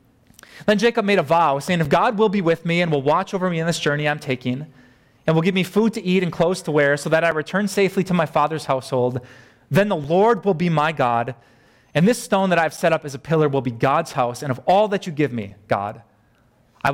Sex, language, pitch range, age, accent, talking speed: male, English, 120-165 Hz, 30-49, American, 260 wpm